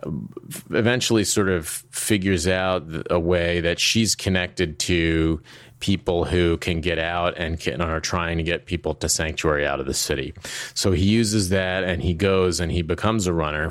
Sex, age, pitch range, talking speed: male, 30-49, 80-95 Hz, 175 wpm